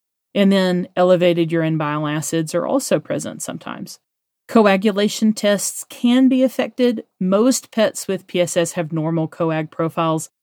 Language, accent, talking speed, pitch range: English, American, 130 wpm, 160-190 Hz